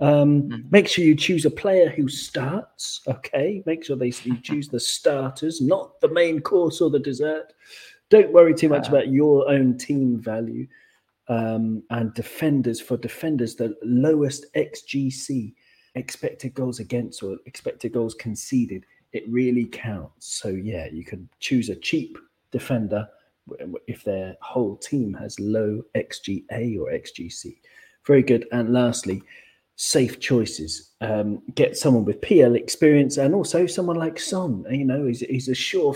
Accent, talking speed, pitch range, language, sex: British, 150 wpm, 120-165 Hz, English, male